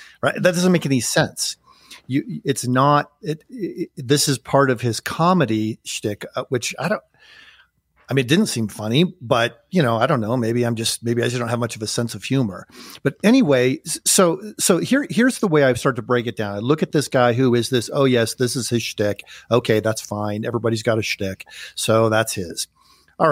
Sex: male